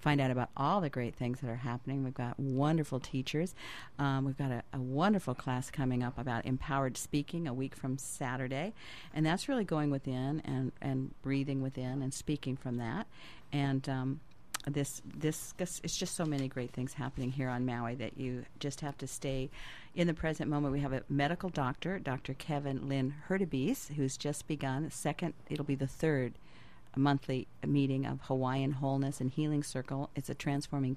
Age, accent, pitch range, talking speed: 50-69, American, 135-155 Hz, 190 wpm